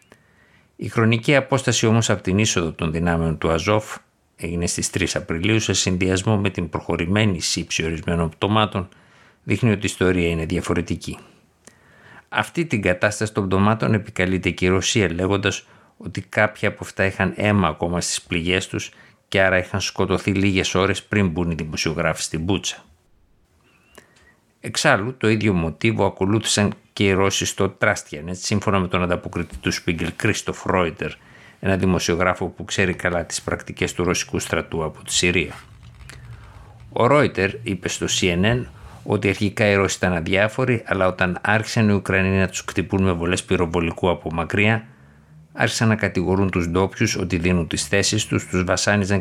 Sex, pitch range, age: male, 85-105 Hz, 50-69